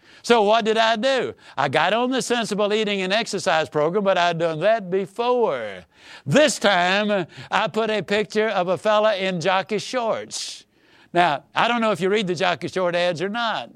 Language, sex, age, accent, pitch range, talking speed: English, male, 60-79, American, 160-225 Hz, 190 wpm